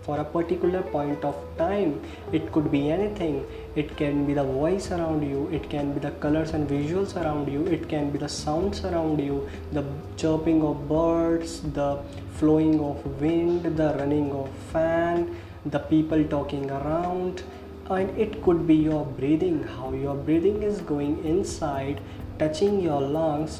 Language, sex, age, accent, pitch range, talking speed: English, male, 20-39, Indian, 140-165 Hz, 165 wpm